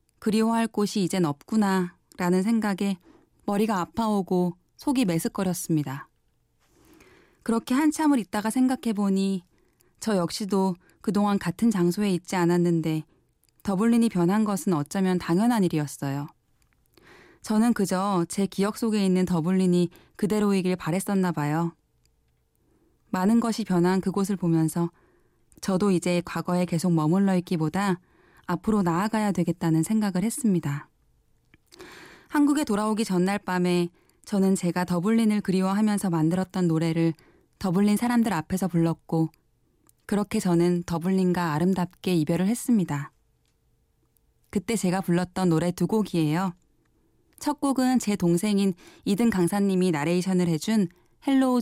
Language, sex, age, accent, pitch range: Korean, female, 20-39, native, 175-210 Hz